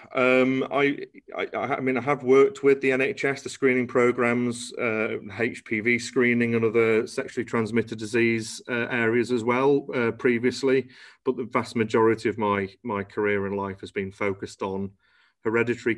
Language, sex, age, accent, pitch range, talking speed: English, male, 30-49, British, 100-120 Hz, 160 wpm